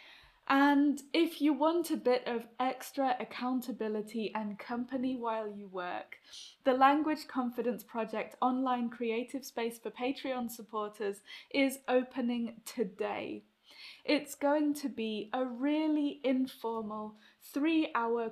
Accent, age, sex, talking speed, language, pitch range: British, 10-29, female, 115 wpm, English, 215-270 Hz